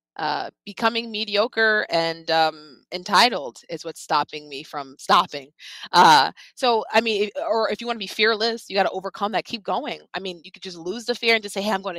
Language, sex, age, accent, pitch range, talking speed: English, female, 20-39, American, 165-220 Hz, 220 wpm